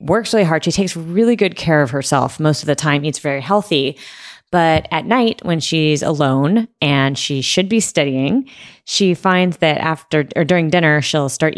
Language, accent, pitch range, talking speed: English, American, 140-180 Hz, 190 wpm